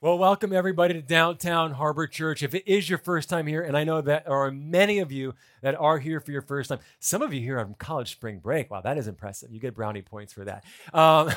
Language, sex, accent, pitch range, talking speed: English, male, American, 135-190 Hz, 265 wpm